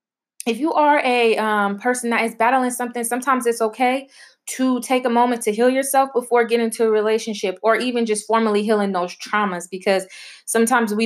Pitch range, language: 195-240 Hz, English